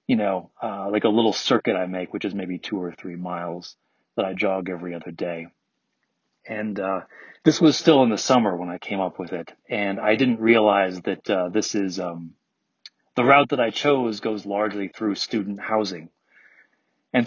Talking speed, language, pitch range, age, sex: 195 wpm, English, 95-115 Hz, 30-49, male